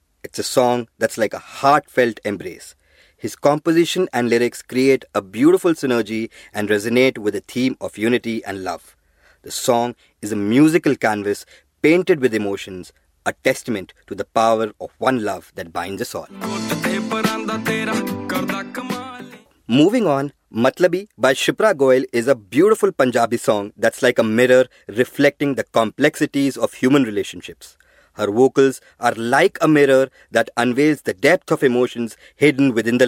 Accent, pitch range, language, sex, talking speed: Indian, 115-160 Hz, English, male, 150 wpm